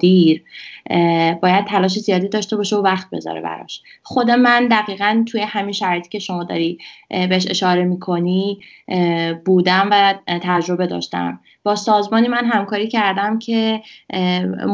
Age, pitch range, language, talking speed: 20-39, 185-220 Hz, Persian, 130 wpm